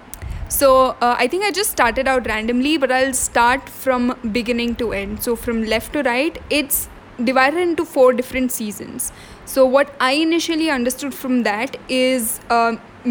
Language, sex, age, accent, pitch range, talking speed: English, female, 10-29, Indian, 230-270 Hz, 165 wpm